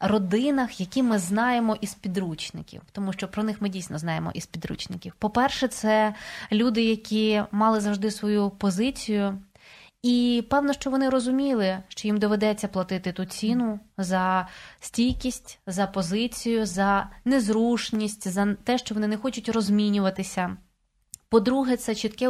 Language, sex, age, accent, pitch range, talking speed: Ukrainian, female, 20-39, native, 195-235 Hz, 135 wpm